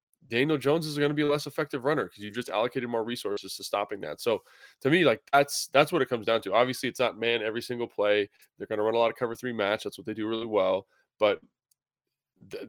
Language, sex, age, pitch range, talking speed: English, male, 20-39, 110-130 Hz, 260 wpm